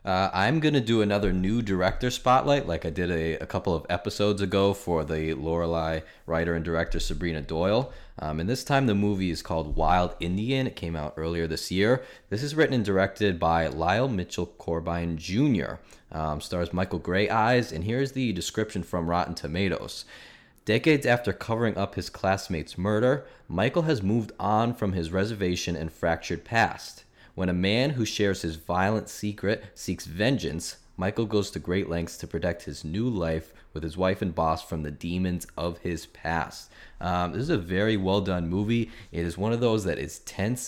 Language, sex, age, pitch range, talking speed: English, male, 20-39, 85-105 Hz, 185 wpm